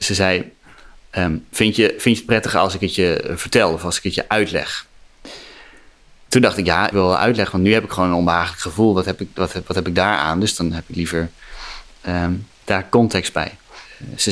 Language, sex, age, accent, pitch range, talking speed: Dutch, male, 30-49, Dutch, 85-105 Hz, 235 wpm